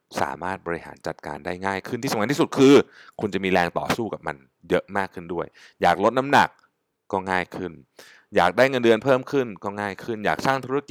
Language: Thai